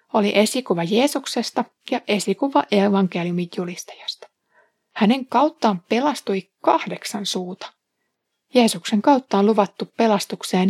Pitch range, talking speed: 195-270 Hz, 95 wpm